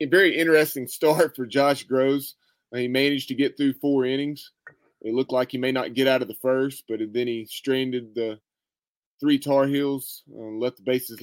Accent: American